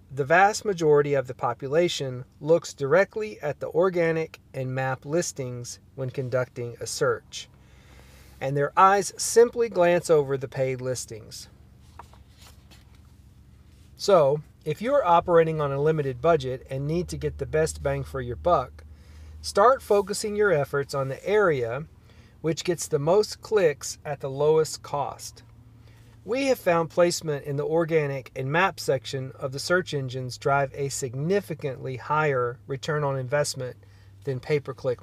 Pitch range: 120-165 Hz